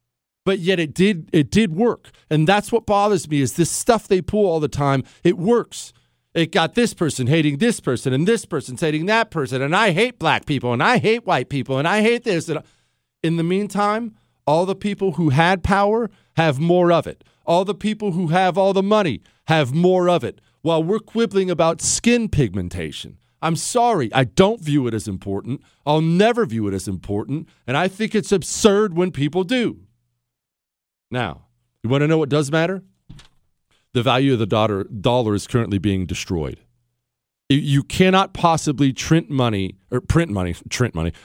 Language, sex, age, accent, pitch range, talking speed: English, male, 40-59, American, 115-185 Hz, 190 wpm